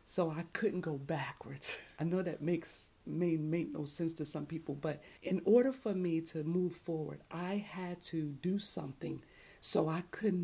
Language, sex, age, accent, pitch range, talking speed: English, female, 40-59, American, 155-180 Hz, 185 wpm